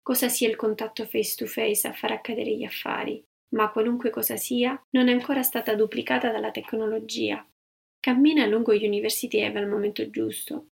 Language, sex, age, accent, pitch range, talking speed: Italian, female, 30-49, native, 220-260 Hz, 160 wpm